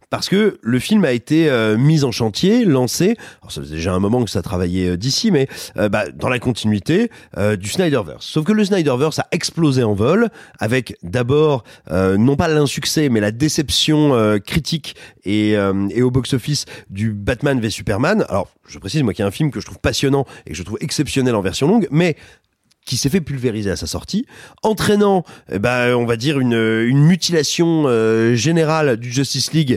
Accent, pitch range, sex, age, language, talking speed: French, 110-160 Hz, male, 30-49, French, 205 wpm